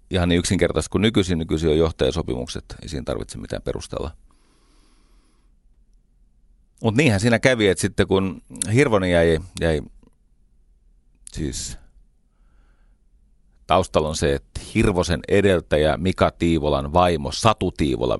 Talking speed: 115 wpm